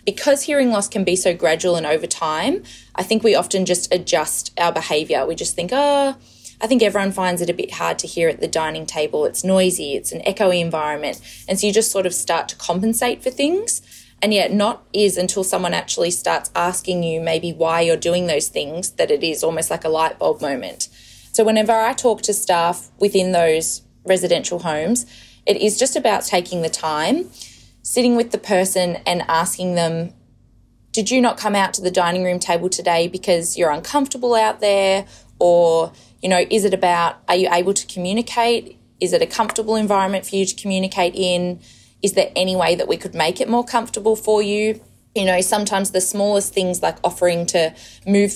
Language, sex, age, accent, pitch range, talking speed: English, female, 20-39, Australian, 170-210 Hz, 200 wpm